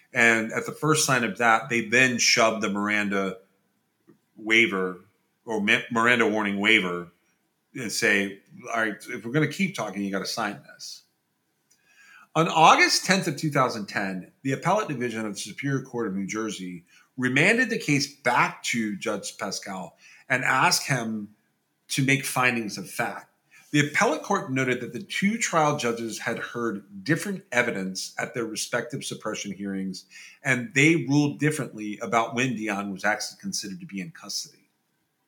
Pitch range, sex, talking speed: 105-150 Hz, male, 160 wpm